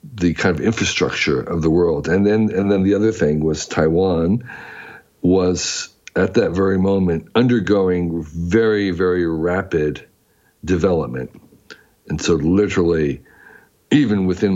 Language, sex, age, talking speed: English, male, 60-79, 130 wpm